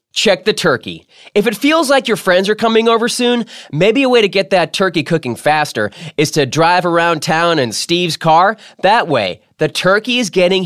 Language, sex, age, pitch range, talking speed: English, male, 20-39, 145-225 Hz, 205 wpm